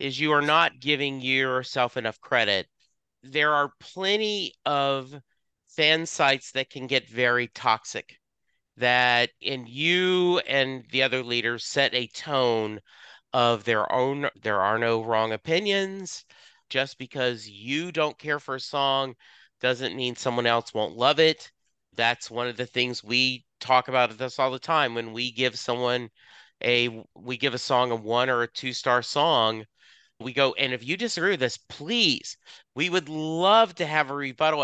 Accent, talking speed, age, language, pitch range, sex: American, 165 wpm, 40-59, English, 120-145 Hz, male